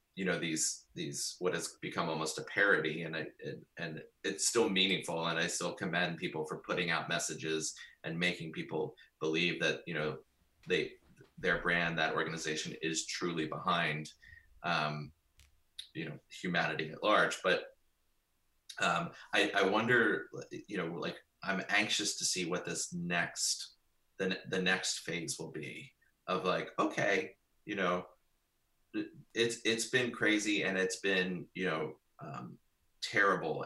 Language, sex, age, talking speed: English, male, 30-49, 150 wpm